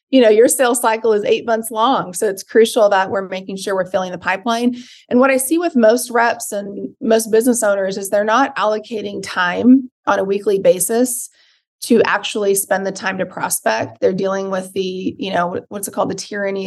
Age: 30-49